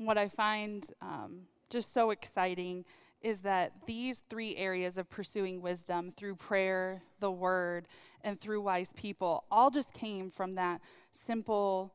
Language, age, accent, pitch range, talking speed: English, 20-39, American, 185-215 Hz, 145 wpm